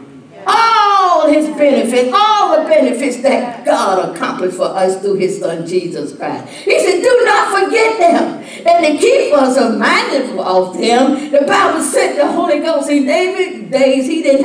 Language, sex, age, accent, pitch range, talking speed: English, female, 60-79, American, 235-320 Hz, 165 wpm